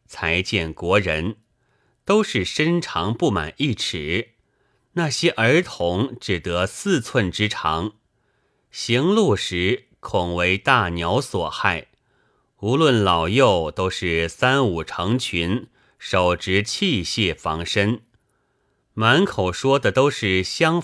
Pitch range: 90-130 Hz